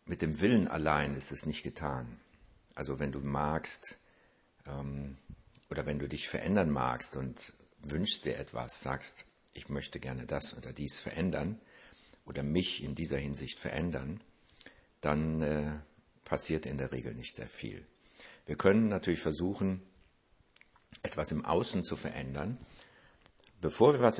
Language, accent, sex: German, German, male